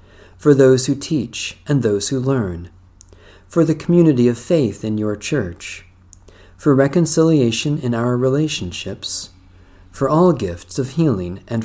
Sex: male